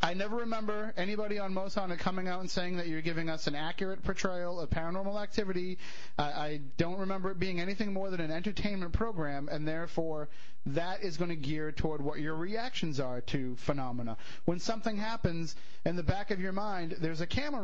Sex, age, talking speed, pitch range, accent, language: male, 30-49, 195 wpm, 155-195 Hz, American, English